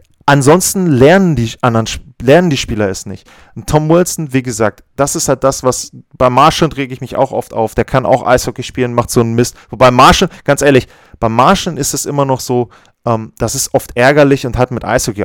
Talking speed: 220 wpm